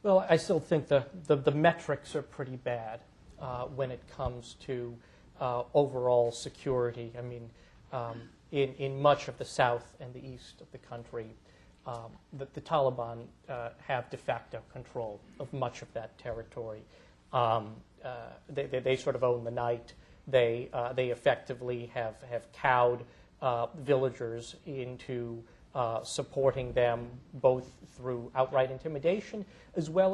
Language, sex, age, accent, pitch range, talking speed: English, male, 40-59, American, 120-145 Hz, 155 wpm